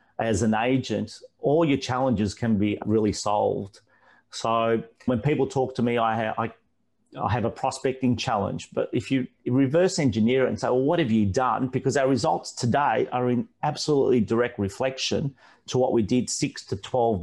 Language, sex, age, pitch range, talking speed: English, male, 30-49, 110-130 Hz, 175 wpm